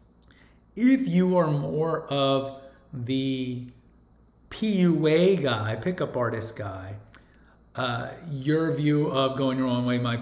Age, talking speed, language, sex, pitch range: 40-59, 115 wpm, English, male, 115-145 Hz